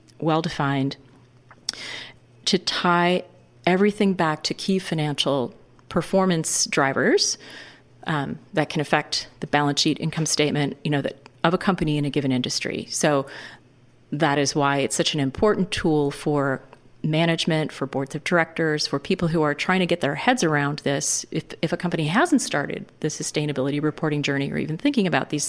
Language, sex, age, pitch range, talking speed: English, female, 40-59, 140-170 Hz, 165 wpm